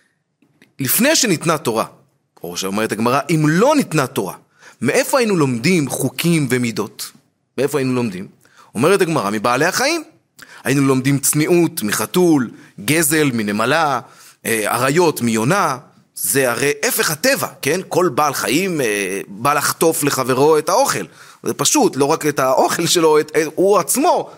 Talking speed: 130 wpm